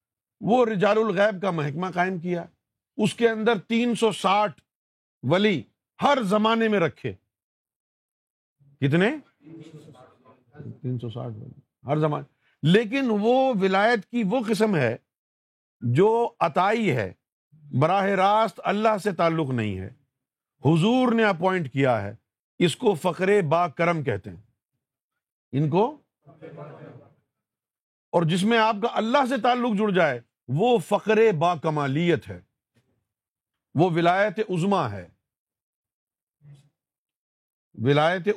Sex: male